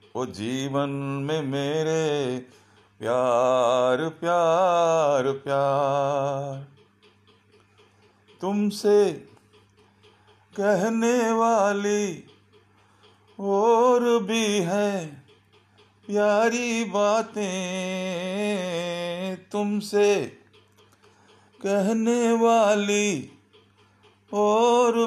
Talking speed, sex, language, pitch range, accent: 45 wpm, male, Hindi, 130-205 Hz, native